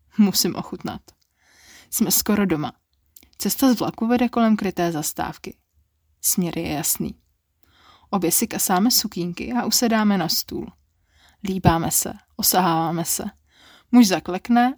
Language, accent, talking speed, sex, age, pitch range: Czech, native, 120 wpm, female, 20-39, 165-215 Hz